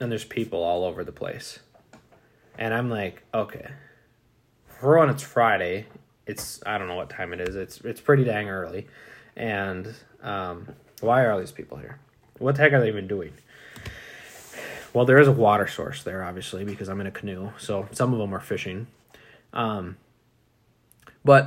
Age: 20-39